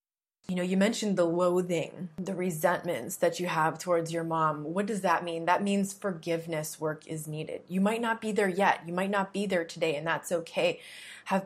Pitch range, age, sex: 160-185 Hz, 20-39, female